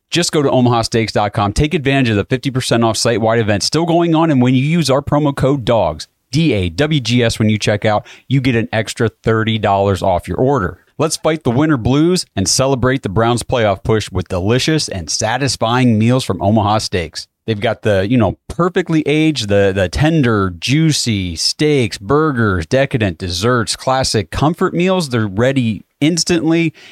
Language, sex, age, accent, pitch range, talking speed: English, male, 30-49, American, 110-140 Hz, 170 wpm